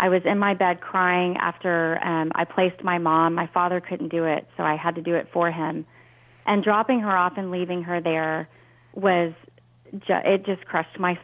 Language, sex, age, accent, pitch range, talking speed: English, female, 30-49, American, 170-215 Hz, 205 wpm